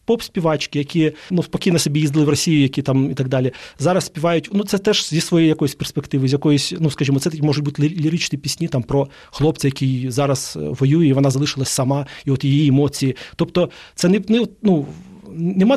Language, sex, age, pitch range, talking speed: Ukrainian, male, 30-49, 140-165 Hz, 200 wpm